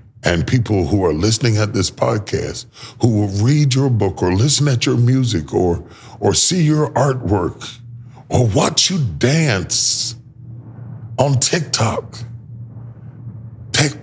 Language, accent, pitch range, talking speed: English, American, 115-145 Hz, 130 wpm